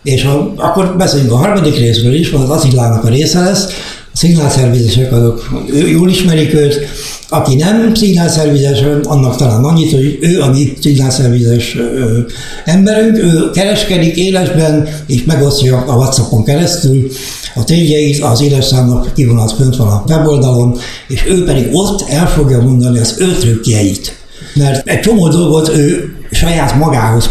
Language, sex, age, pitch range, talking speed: Hungarian, male, 60-79, 125-160 Hz, 150 wpm